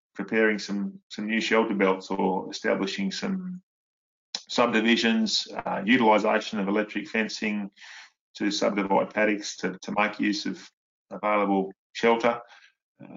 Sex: male